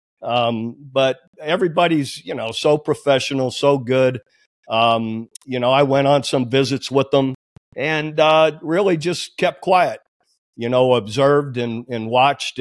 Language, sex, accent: English, male, American